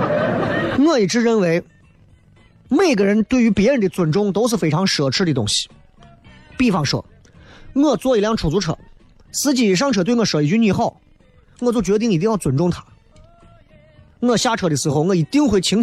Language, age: Chinese, 30-49